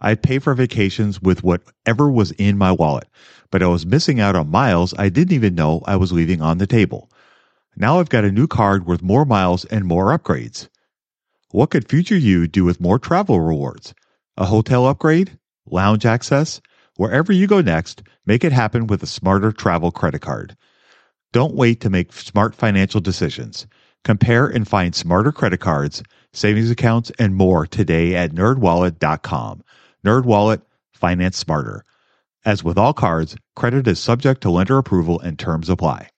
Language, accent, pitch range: English, American, 95-125 Hz